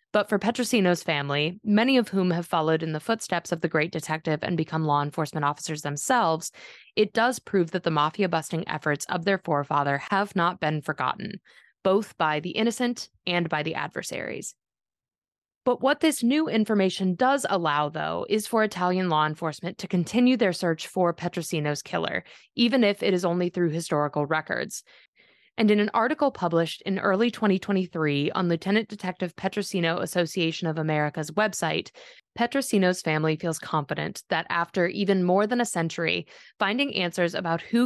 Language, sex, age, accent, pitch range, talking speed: English, female, 20-39, American, 160-205 Hz, 165 wpm